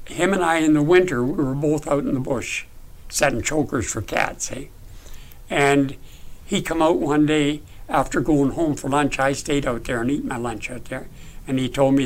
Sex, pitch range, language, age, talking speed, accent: male, 120-150 Hz, English, 60-79, 215 wpm, American